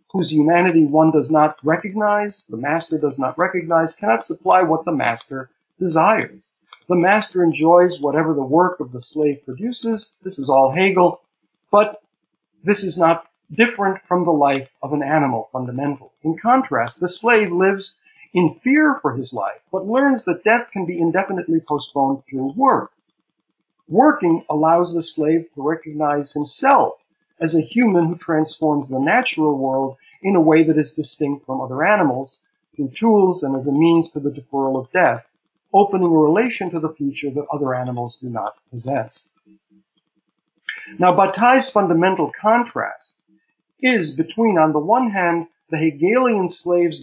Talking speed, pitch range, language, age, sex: 155 wpm, 145-190 Hz, English, 50-69, male